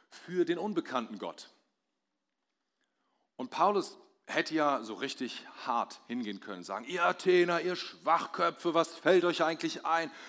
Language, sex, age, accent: German, male, 30-49, German